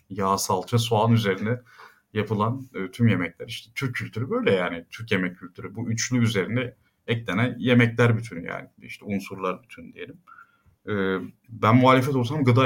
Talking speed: 150 wpm